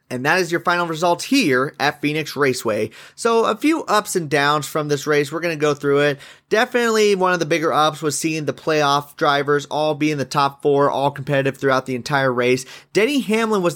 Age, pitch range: 30-49, 130-170 Hz